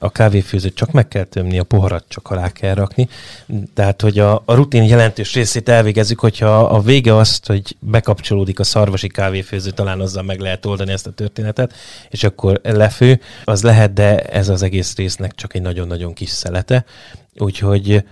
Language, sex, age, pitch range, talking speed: Hungarian, male, 30-49, 95-115 Hz, 175 wpm